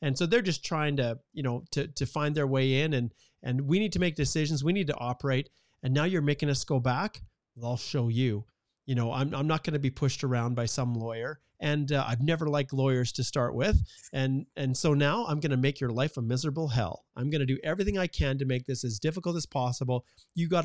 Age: 40-59